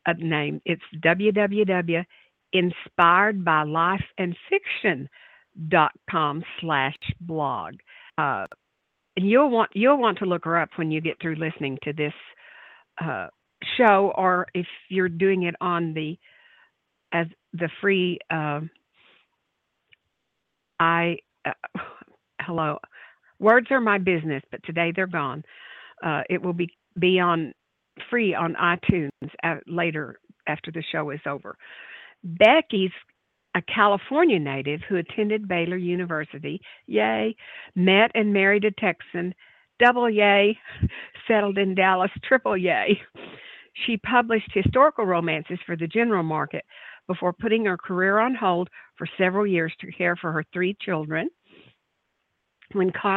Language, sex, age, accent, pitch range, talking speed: English, female, 50-69, American, 165-205 Hz, 120 wpm